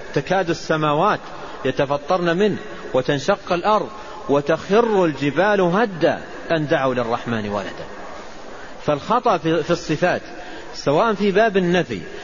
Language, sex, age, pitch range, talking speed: Arabic, male, 40-59, 140-185 Hz, 100 wpm